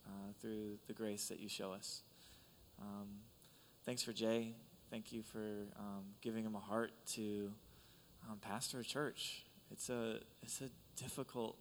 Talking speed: 155 wpm